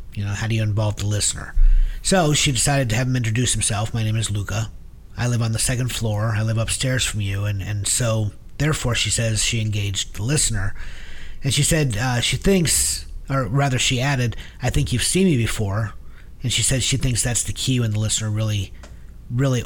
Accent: American